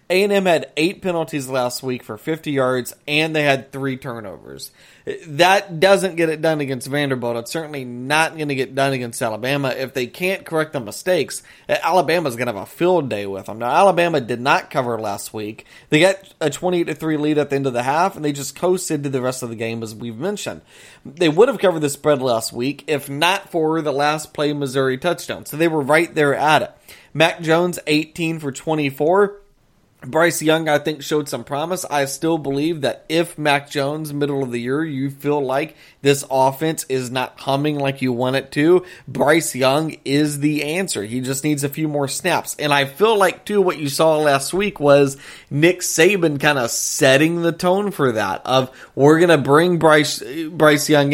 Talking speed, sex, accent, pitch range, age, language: 205 wpm, male, American, 135-165 Hz, 30-49, English